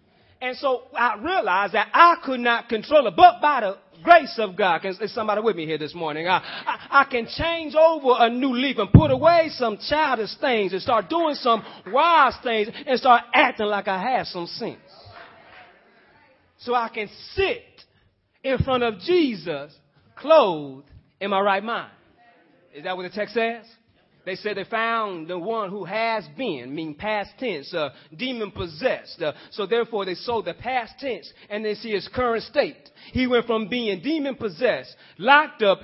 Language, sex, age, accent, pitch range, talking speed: English, male, 30-49, American, 180-260 Hz, 175 wpm